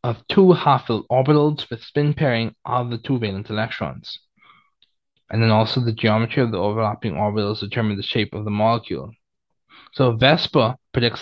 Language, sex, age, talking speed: English, male, 20-39, 160 wpm